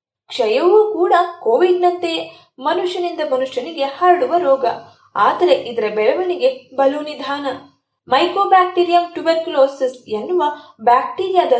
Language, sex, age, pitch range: Kannada, female, 20-39, 270-360 Hz